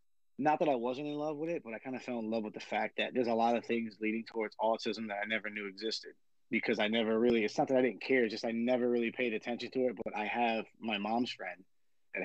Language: English